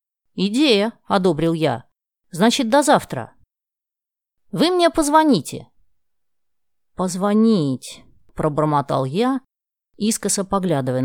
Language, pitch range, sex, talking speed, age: Russian, 150-225 Hz, female, 75 wpm, 30-49